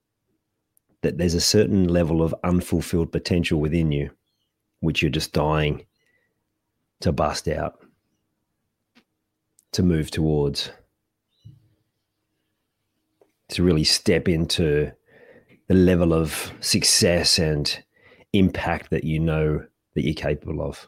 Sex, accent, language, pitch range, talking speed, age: male, Australian, English, 75-105 Hz, 105 wpm, 40-59